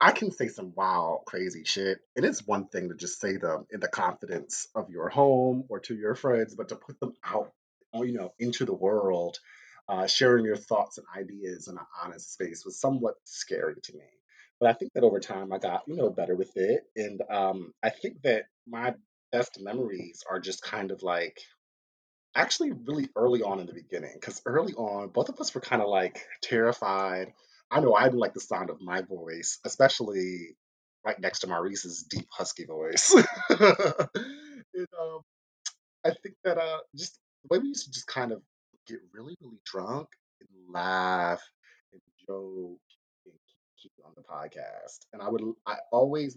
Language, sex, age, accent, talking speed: English, male, 30-49, American, 190 wpm